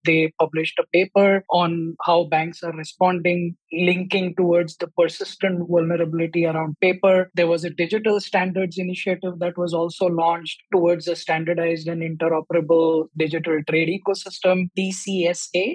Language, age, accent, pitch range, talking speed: English, 20-39, Indian, 170-200 Hz, 135 wpm